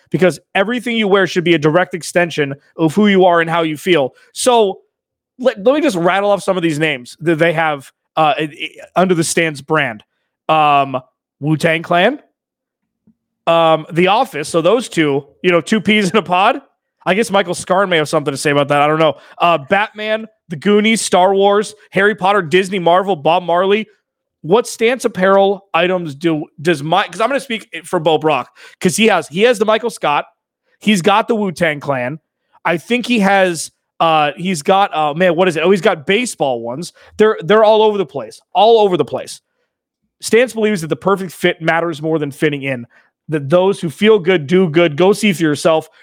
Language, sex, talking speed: English, male, 200 wpm